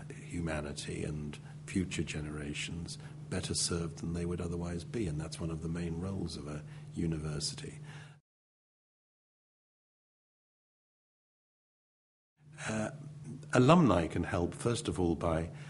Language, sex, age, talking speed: English, male, 60-79, 110 wpm